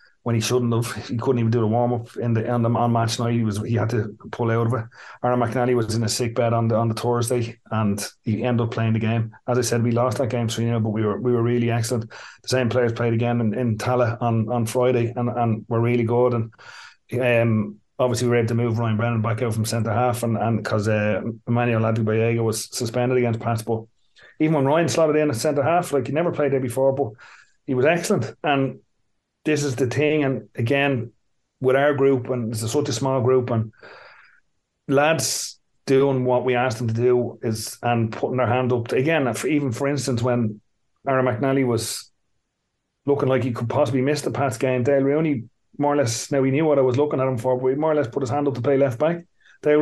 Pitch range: 115-135 Hz